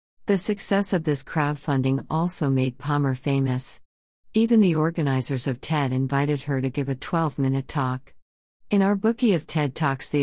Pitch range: 135-160 Hz